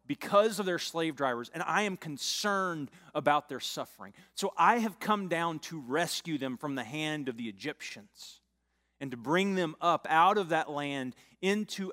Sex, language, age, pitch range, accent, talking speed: male, English, 30-49, 120-180 Hz, American, 180 wpm